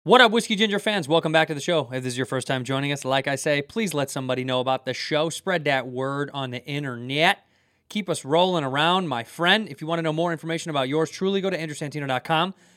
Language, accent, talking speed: English, American, 250 wpm